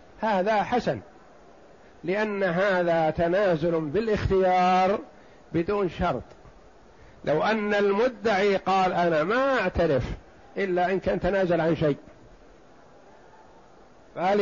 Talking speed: 90 wpm